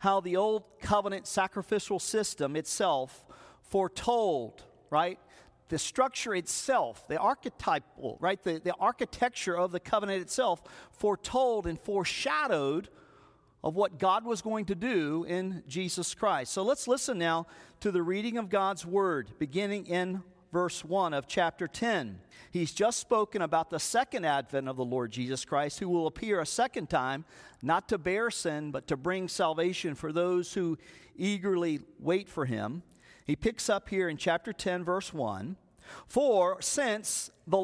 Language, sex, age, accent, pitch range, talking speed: English, male, 50-69, American, 165-210 Hz, 155 wpm